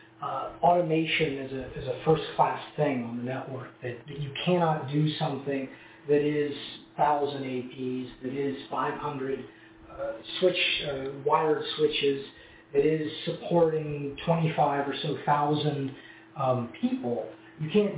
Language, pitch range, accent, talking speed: English, 135-155 Hz, American, 135 wpm